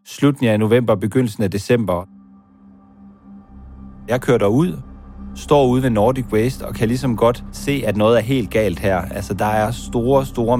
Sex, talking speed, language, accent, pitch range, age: male, 170 wpm, Danish, native, 100-125 Hz, 30-49